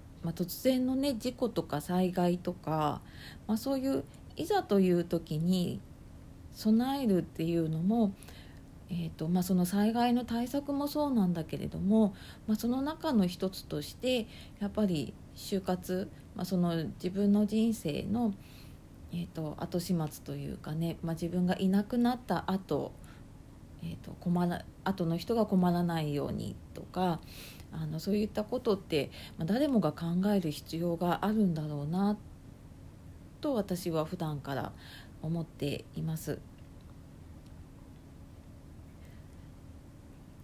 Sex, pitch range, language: female, 165-215 Hz, Japanese